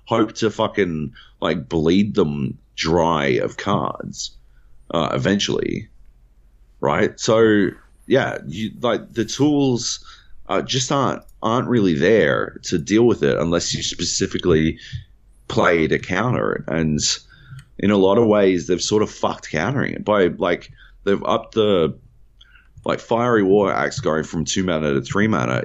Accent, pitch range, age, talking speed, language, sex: Australian, 80-125 Hz, 30-49, 145 wpm, English, male